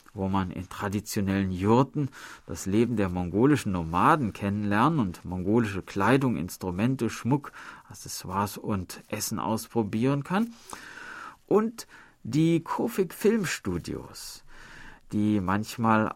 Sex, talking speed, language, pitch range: male, 100 wpm, German, 95-135 Hz